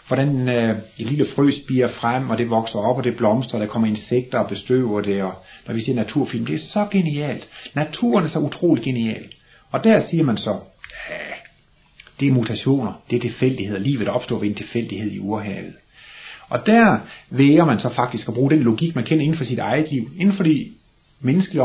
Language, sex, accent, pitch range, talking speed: Danish, male, native, 110-140 Hz, 205 wpm